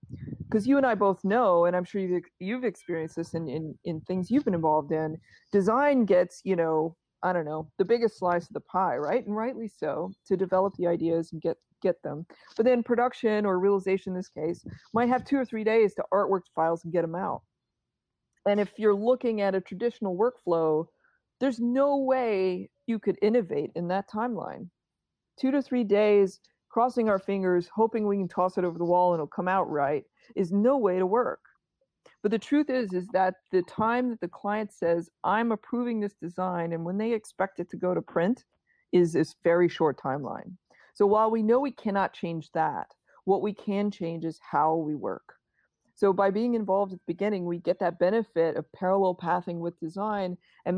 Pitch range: 175-220 Hz